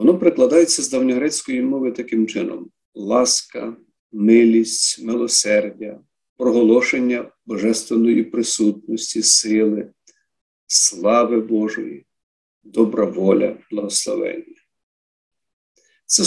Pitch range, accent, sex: 110-170 Hz, native, male